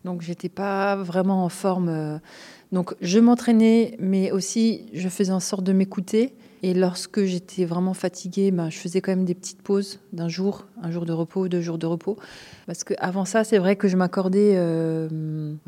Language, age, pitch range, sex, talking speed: French, 30-49, 180-210 Hz, female, 190 wpm